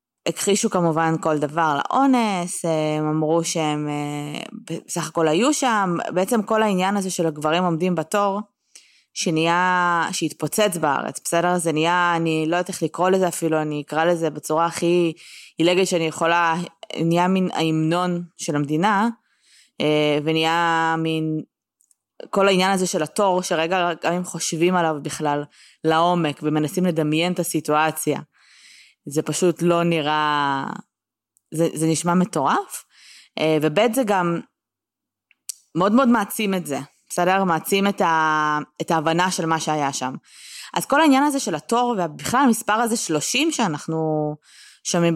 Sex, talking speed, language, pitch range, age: female, 135 wpm, Hebrew, 160-195 Hz, 20-39